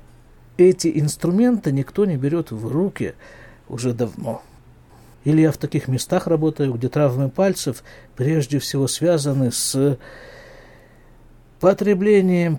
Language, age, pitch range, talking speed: Russian, 60-79, 125-170 Hz, 110 wpm